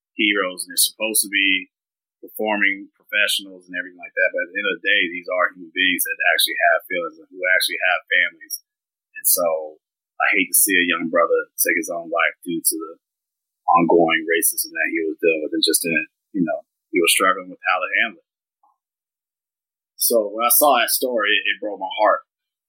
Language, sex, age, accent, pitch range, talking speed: English, male, 30-49, American, 270-390 Hz, 210 wpm